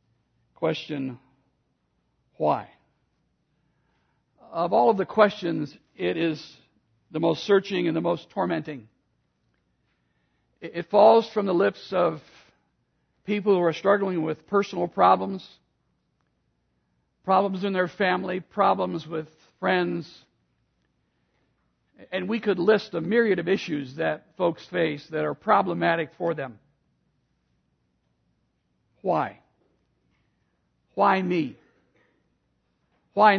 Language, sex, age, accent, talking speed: English, male, 60-79, American, 100 wpm